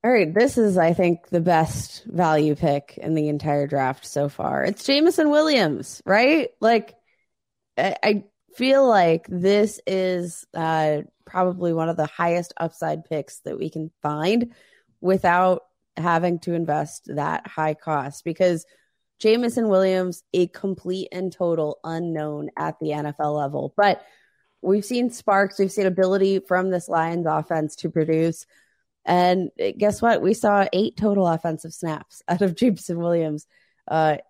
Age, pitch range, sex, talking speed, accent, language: 20-39, 155-195 Hz, female, 150 wpm, American, English